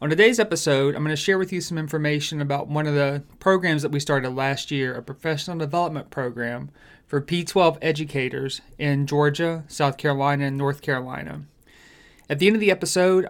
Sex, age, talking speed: male, 30-49, 185 wpm